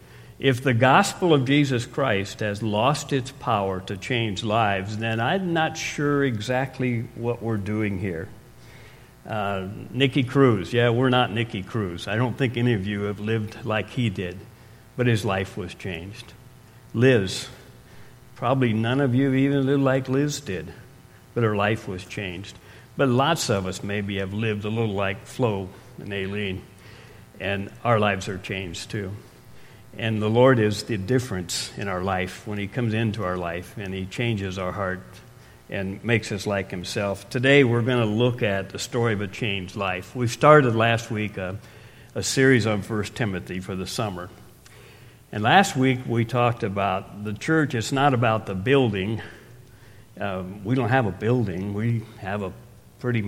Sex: male